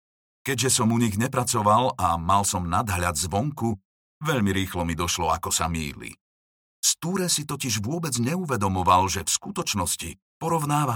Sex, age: male, 50-69